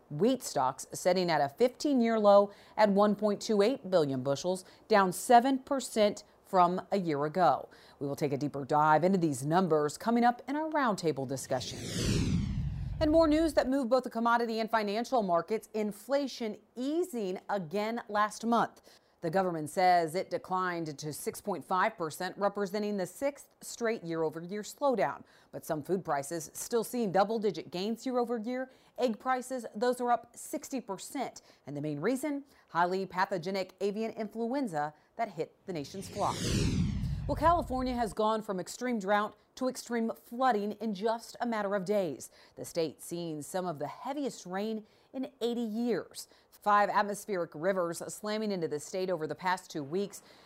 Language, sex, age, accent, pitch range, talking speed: English, female, 40-59, American, 175-235 Hz, 150 wpm